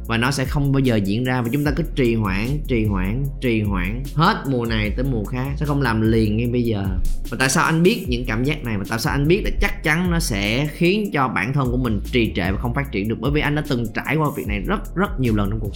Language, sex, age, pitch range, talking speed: Vietnamese, male, 20-39, 110-155 Hz, 295 wpm